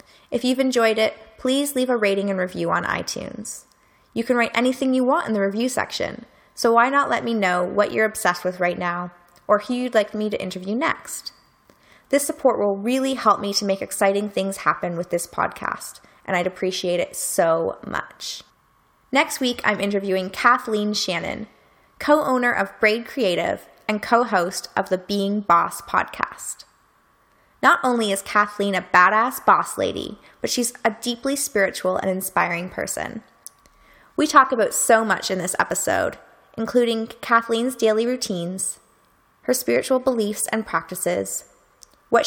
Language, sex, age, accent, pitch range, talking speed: English, female, 20-39, American, 190-245 Hz, 160 wpm